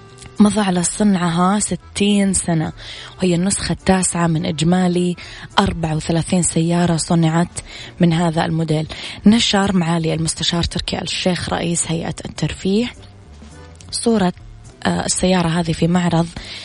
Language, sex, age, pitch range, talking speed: Arabic, female, 20-39, 160-180 Hz, 110 wpm